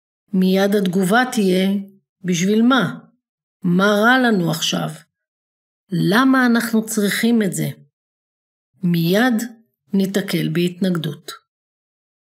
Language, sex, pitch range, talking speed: Hebrew, female, 165-225 Hz, 85 wpm